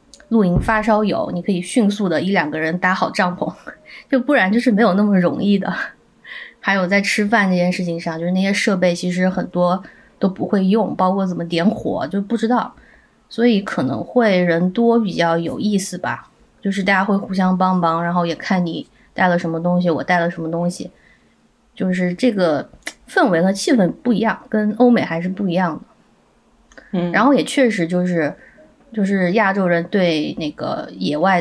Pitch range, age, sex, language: 175-225 Hz, 20-39, female, Chinese